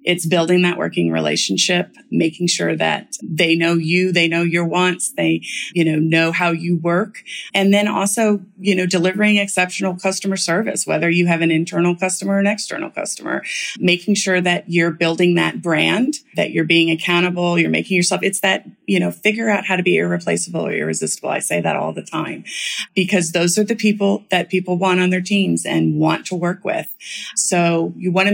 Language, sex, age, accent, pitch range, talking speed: English, female, 30-49, American, 170-205 Hz, 195 wpm